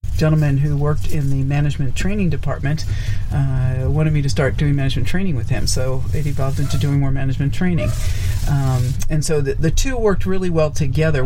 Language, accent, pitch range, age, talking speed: English, American, 125-155 Hz, 50-69, 190 wpm